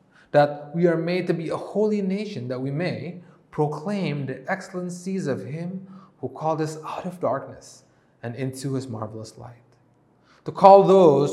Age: 30-49